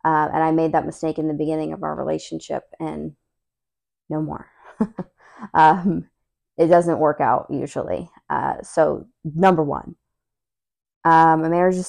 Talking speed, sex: 145 wpm, female